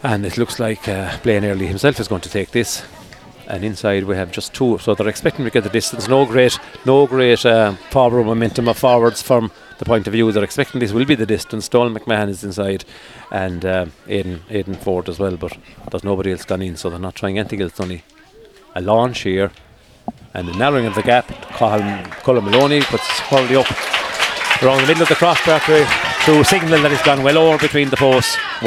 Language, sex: English, male